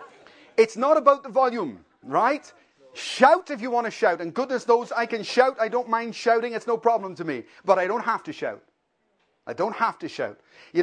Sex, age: male, 30-49